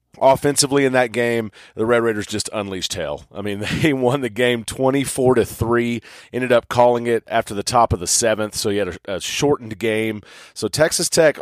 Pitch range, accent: 110-130 Hz, American